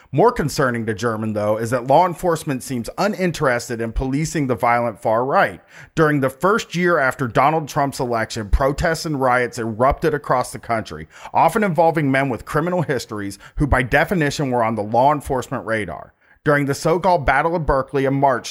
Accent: American